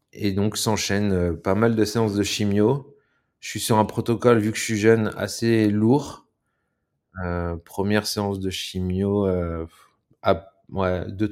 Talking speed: 150 wpm